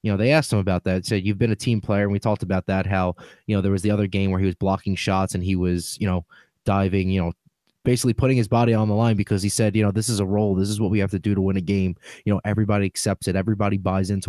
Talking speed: 315 wpm